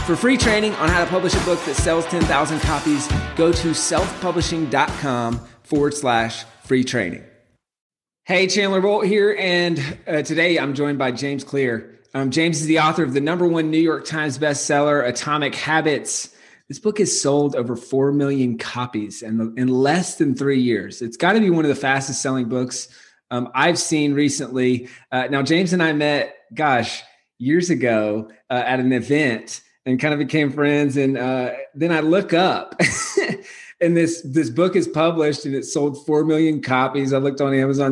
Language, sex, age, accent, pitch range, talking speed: English, male, 30-49, American, 125-160 Hz, 180 wpm